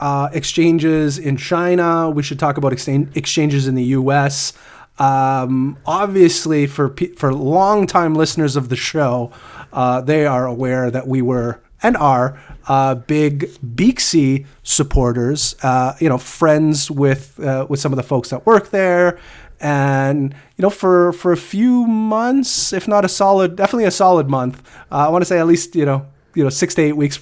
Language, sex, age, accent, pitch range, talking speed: English, male, 30-49, American, 130-160 Hz, 180 wpm